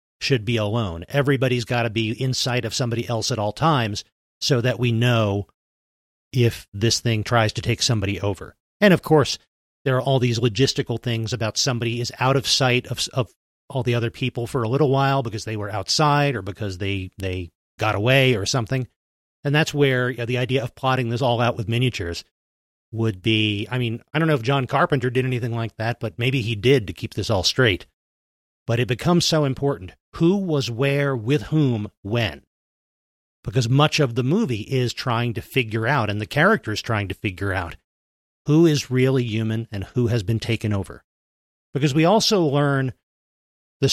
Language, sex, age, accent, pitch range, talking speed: English, male, 40-59, American, 105-135 Hz, 200 wpm